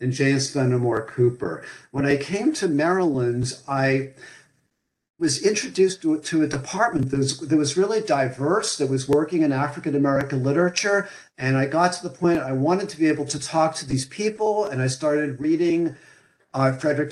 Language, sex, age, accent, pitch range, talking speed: English, male, 50-69, American, 130-155 Hz, 170 wpm